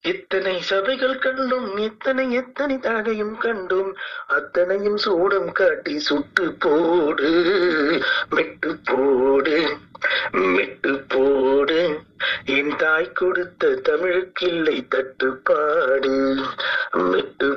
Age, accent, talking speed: 30-49, native, 60 wpm